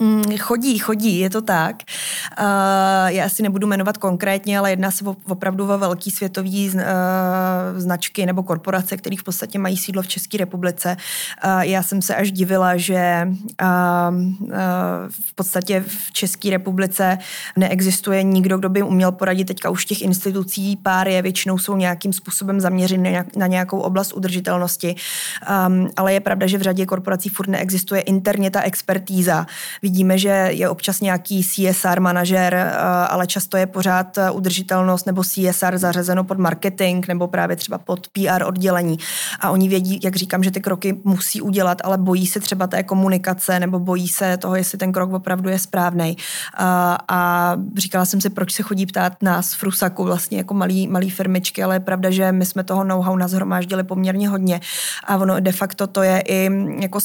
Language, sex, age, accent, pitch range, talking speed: Czech, female, 20-39, native, 185-195 Hz, 165 wpm